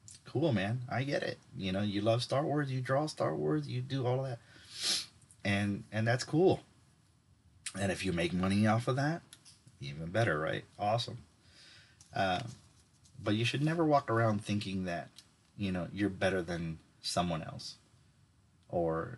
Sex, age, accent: male, 30-49, American